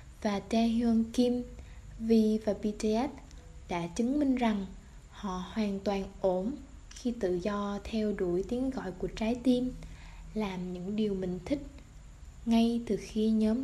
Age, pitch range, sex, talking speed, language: 20-39, 200-250 Hz, female, 145 wpm, Vietnamese